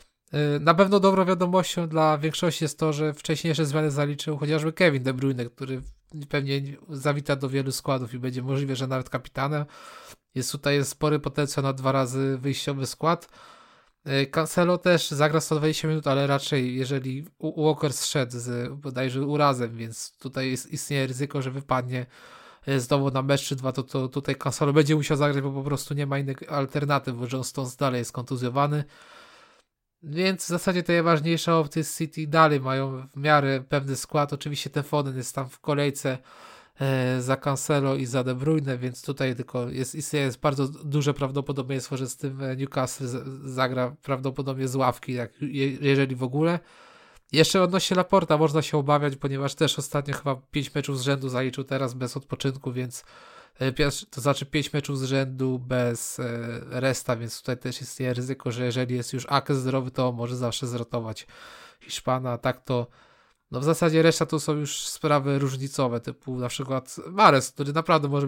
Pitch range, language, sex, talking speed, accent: 130-150 Hz, Polish, male, 165 wpm, native